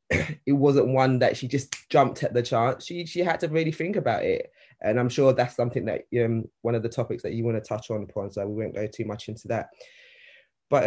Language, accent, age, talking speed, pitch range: English, British, 20-39, 245 wpm, 115-145 Hz